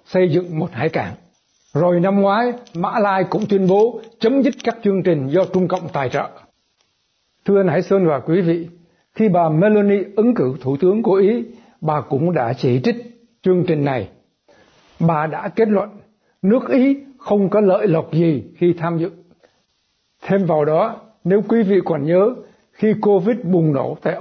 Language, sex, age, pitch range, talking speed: Vietnamese, male, 60-79, 165-210 Hz, 185 wpm